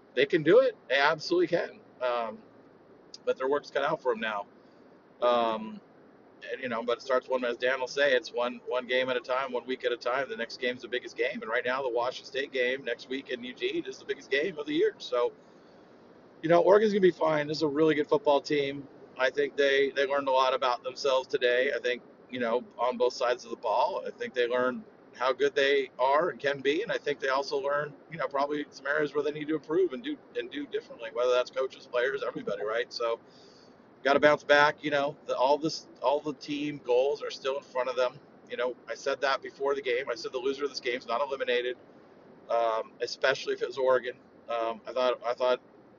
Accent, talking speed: American, 245 wpm